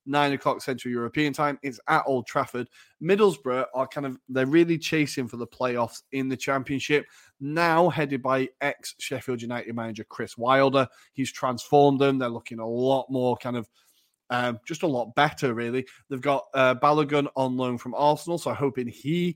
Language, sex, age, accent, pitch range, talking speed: English, male, 30-49, British, 120-150 Hz, 180 wpm